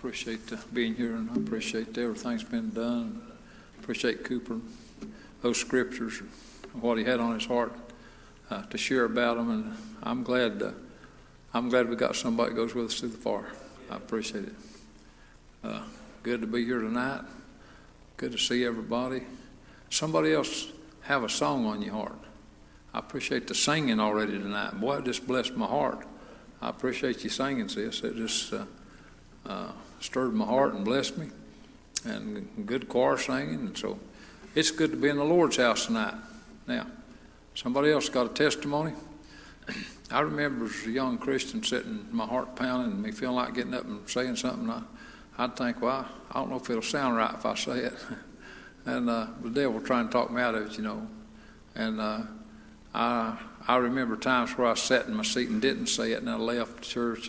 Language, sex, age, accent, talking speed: English, male, 60-79, American, 190 wpm